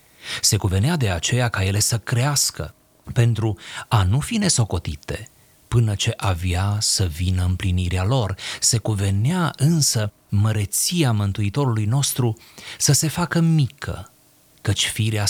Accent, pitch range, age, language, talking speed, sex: native, 95-125 Hz, 30-49, Romanian, 125 wpm, male